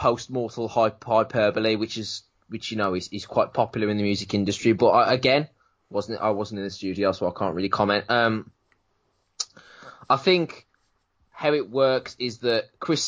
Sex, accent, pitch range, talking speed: male, British, 100-125 Hz, 170 wpm